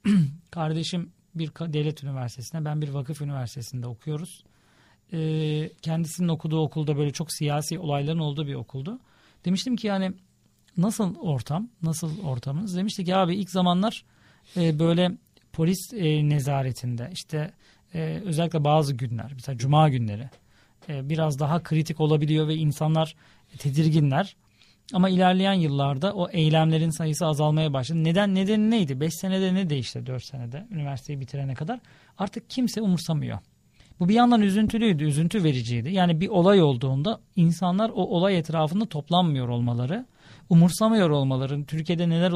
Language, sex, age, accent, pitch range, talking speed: Turkish, male, 40-59, native, 145-185 Hz, 130 wpm